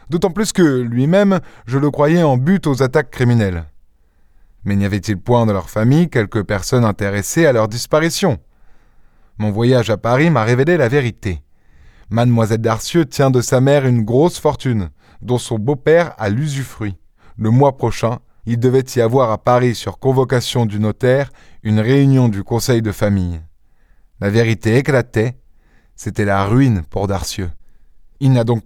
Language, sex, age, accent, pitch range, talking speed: French, male, 20-39, French, 110-140 Hz, 160 wpm